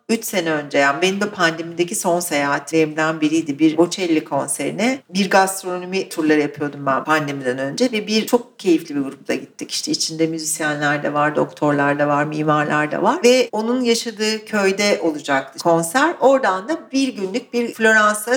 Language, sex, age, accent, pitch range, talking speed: Turkish, female, 60-79, native, 165-245 Hz, 165 wpm